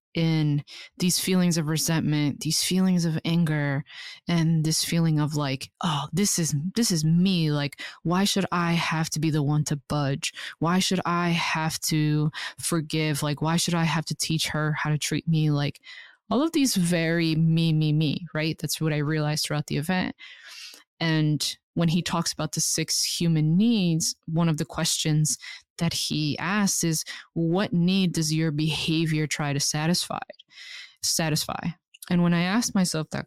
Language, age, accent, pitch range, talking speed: English, 20-39, American, 150-175 Hz, 175 wpm